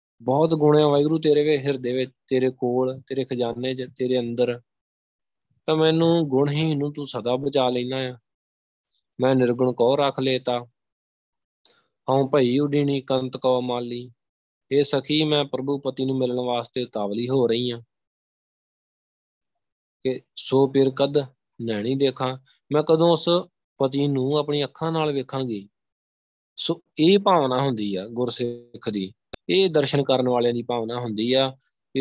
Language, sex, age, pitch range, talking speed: Punjabi, male, 20-39, 120-140 Hz, 140 wpm